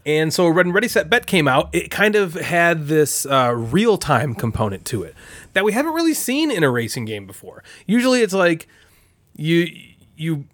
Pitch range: 140-195 Hz